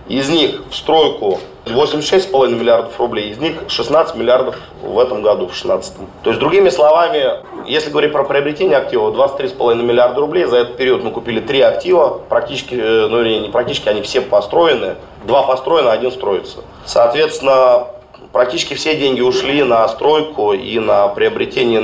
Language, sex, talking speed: Russian, male, 155 wpm